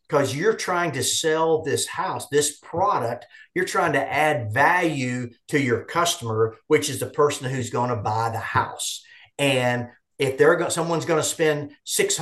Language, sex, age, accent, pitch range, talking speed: English, male, 50-69, American, 125-165 Hz, 170 wpm